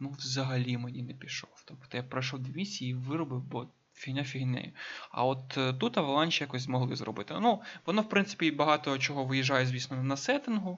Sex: male